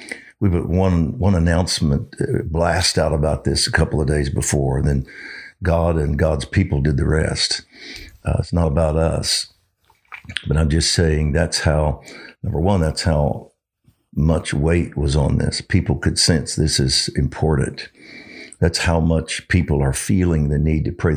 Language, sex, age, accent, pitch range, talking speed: English, male, 60-79, American, 75-90 Hz, 165 wpm